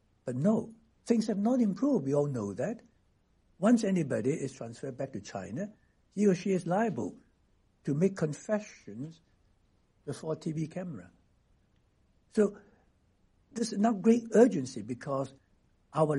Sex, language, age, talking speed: male, English, 60-79, 135 wpm